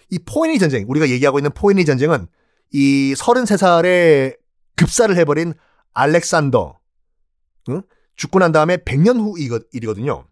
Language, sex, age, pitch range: Korean, male, 40-59, 130-205 Hz